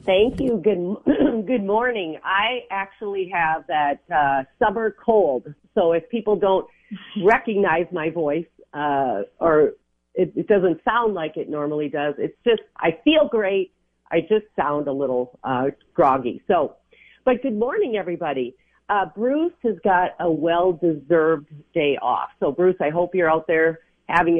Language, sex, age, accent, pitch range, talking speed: English, female, 40-59, American, 160-210 Hz, 150 wpm